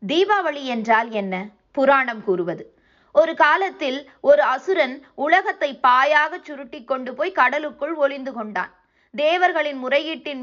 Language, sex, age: Tamil, female, 20-39